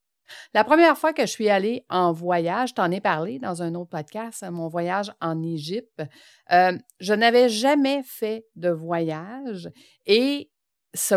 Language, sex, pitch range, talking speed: French, female, 180-255 Hz, 160 wpm